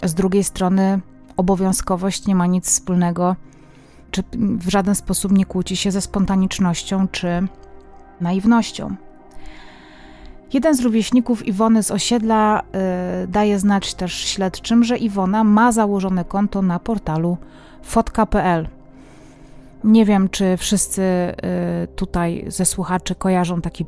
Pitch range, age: 175-200 Hz, 30-49